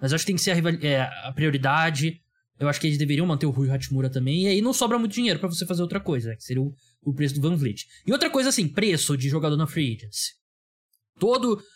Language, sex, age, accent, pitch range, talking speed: Portuguese, male, 20-39, Brazilian, 120-175 Hz, 270 wpm